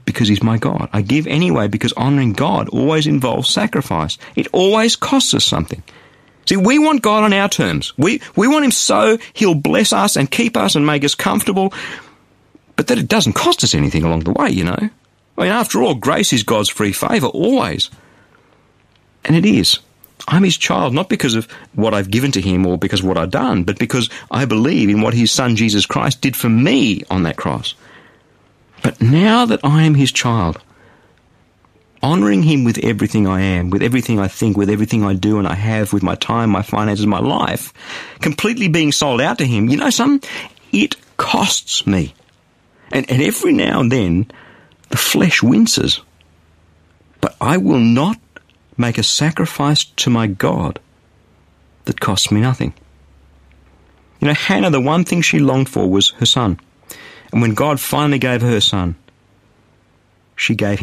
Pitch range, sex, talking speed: 100-150 Hz, male, 180 wpm